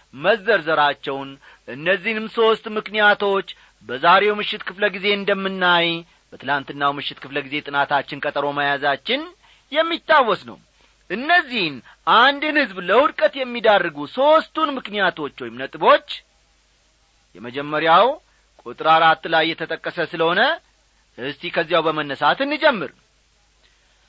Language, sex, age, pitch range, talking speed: English, male, 40-59, 150-230 Hz, 80 wpm